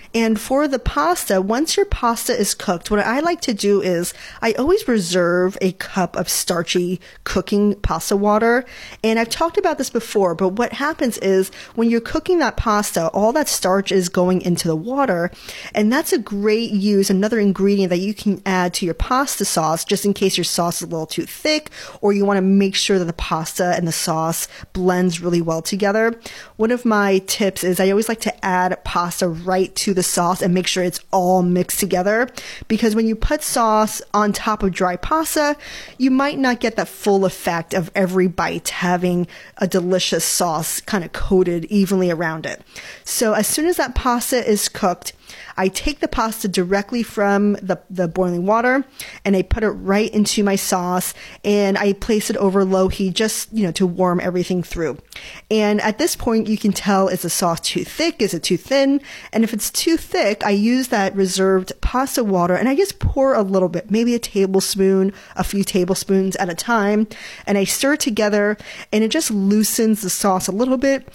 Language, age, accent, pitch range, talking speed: English, 30-49, American, 185-230 Hz, 200 wpm